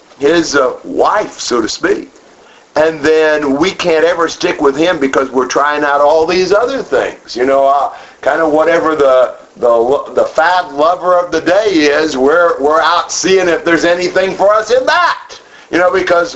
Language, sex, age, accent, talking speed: English, male, 50-69, American, 185 wpm